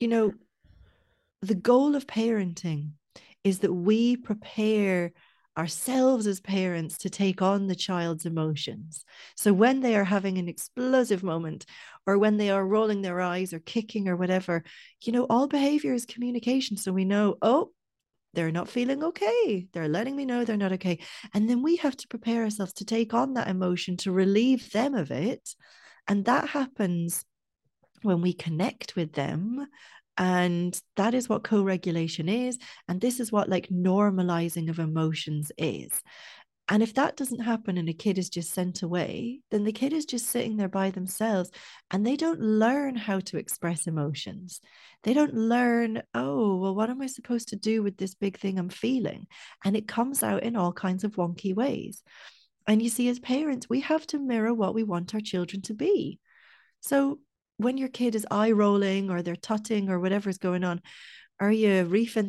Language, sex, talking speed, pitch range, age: English, female, 180 wpm, 185-240 Hz, 40-59